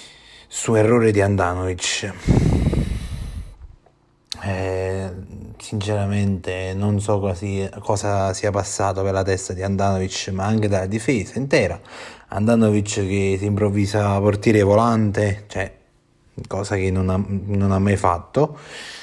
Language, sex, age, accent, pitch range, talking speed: Italian, male, 30-49, native, 100-115 Hz, 115 wpm